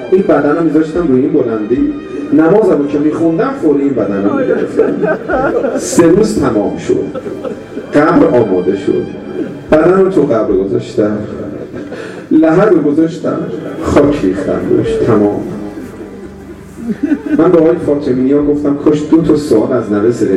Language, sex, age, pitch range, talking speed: Persian, male, 50-69, 145-215 Hz, 130 wpm